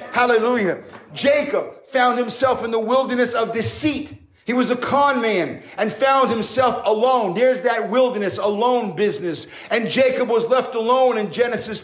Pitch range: 230-270 Hz